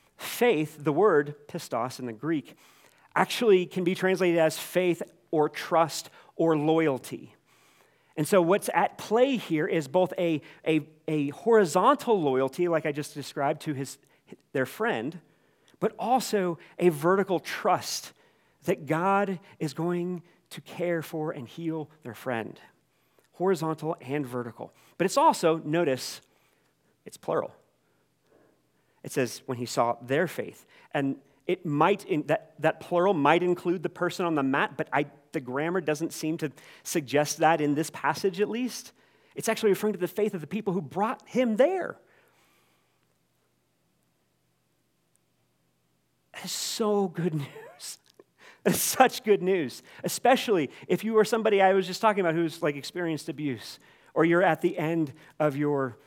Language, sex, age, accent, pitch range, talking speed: English, male, 40-59, American, 145-185 Hz, 150 wpm